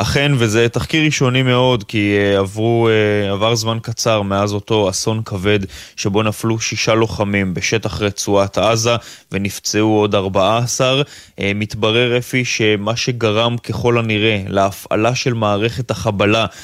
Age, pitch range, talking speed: 20-39, 105-125 Hz, 125 wpm